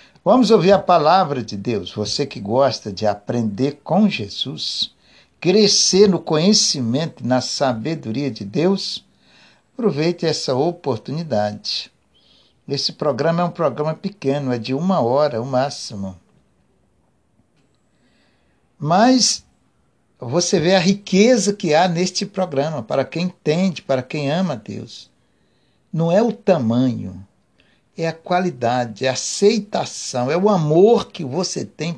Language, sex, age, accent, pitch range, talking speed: Portuguese, male, 60-79, Brazilian, 130-190 Hz, 130 wpm